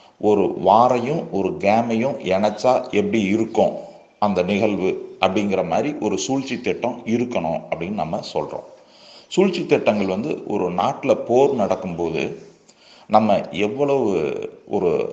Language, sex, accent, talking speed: Tamil, male, native, 110 wpm